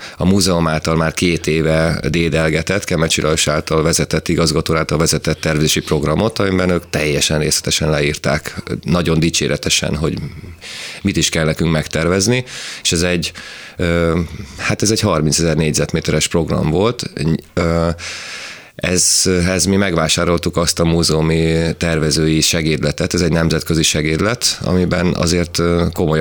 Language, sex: Hungarian, male